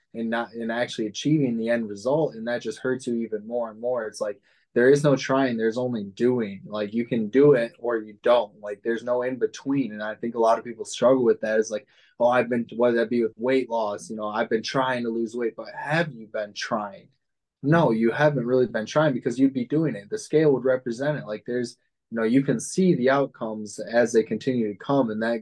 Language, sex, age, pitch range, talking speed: English, male, 20-39, 115-135 Hz, 250 wpm